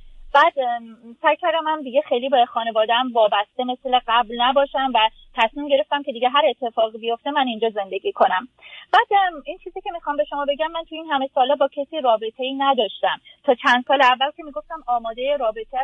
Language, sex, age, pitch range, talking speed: Persian, female, 30-49, 235-305 Hz, 185 wpm